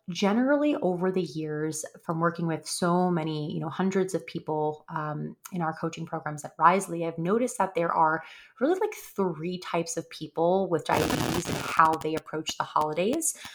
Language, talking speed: English, 175 wpm